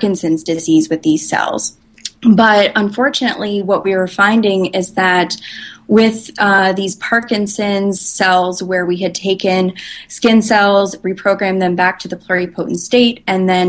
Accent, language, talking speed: American, English, 145 wpm